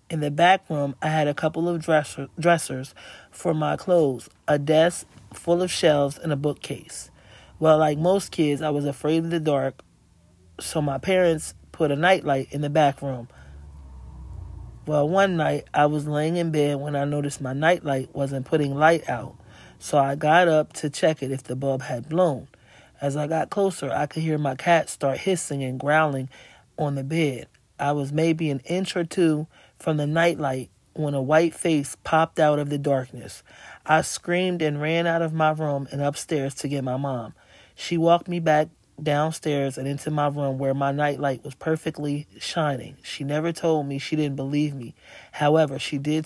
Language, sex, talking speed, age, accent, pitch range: English, male, 190 wpm, 30-49, American, 135-155 Hz